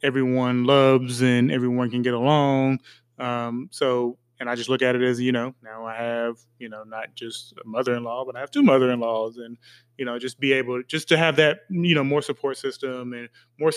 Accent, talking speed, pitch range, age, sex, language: American, 220 wpm, 120-135 Hz, 20-39, male, English